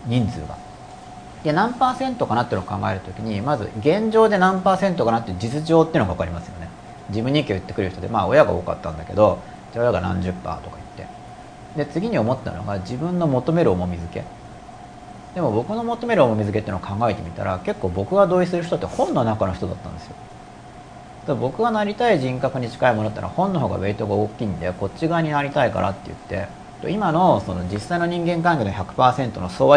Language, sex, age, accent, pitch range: Japanese, male, 40-59, native, 100-155 Hz